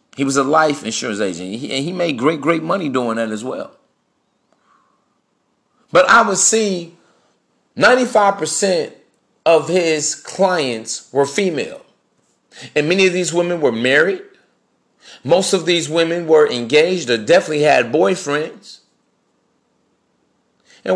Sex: male